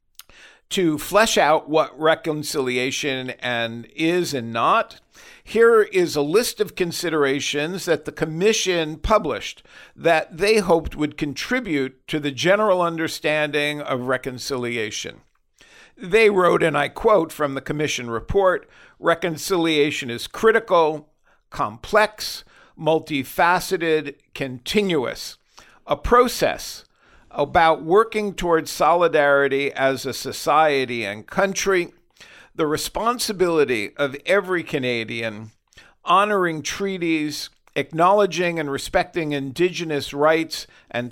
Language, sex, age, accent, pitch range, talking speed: English, male, 50-69, American, 140-180 Hz, 100 wpm